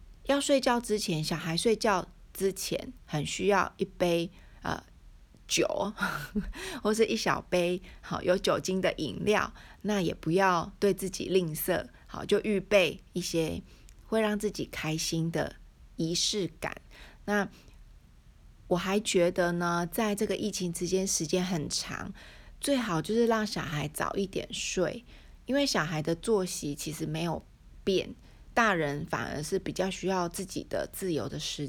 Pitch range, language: 170-210 Hz, Chinese